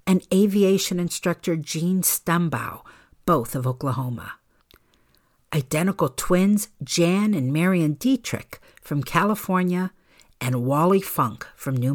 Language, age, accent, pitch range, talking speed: English, 60-79, American, 135-185 Hz, 105 wpm